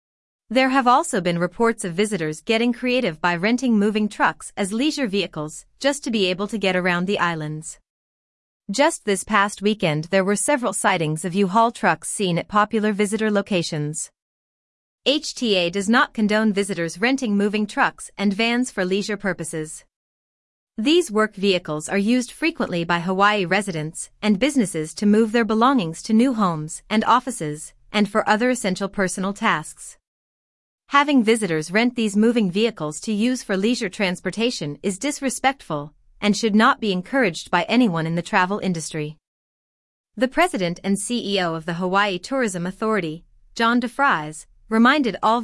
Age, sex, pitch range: 30-49, female, 180-230 Hz